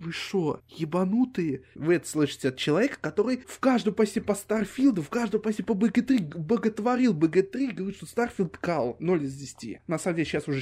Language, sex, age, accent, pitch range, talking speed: Russian, male, 20-39, native, 140-195 Hz, 185 wpm